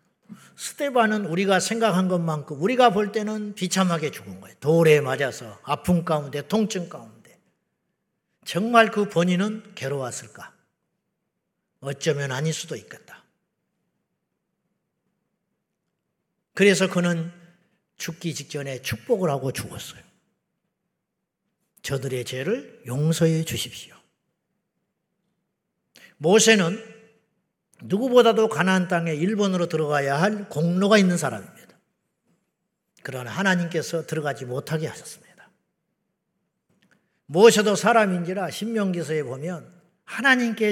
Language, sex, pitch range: Korean, male, 155-205 Hz